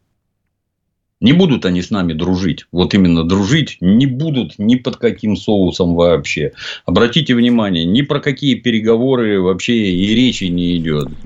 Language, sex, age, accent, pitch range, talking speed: Russian, male, 50-69, native, 95-130 Hz, 145 wpm